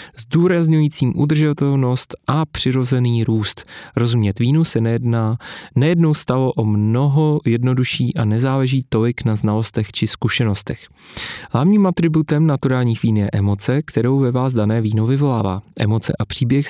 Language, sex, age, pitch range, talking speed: Czech, male, 30-49, 115-145 Hz, 130 wpm